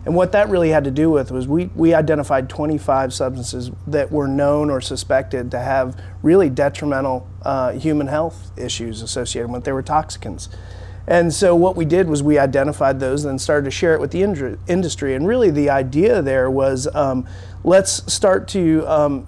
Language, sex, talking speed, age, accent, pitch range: English, male, 190 wpm, 40-59, American, 125-150 Hz